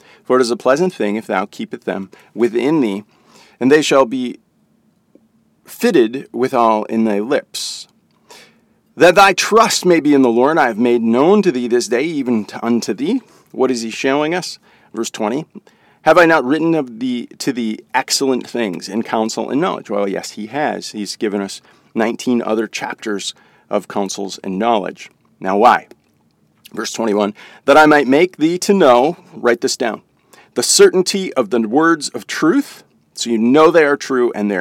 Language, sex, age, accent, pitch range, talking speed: English, male, 40-59, American, 110-155 Hz, 180 wpm